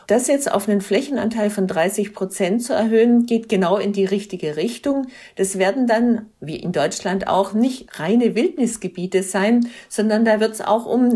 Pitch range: 195-235 Hz